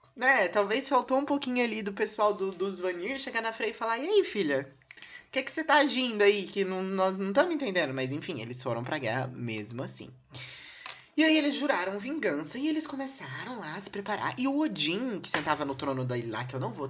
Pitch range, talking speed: 135-210 Hz, 235 wpm